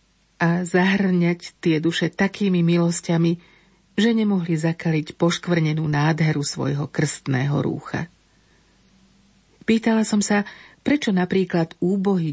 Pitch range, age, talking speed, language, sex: 155-190 Hz, 50-69, 95 wpm, Slovak, female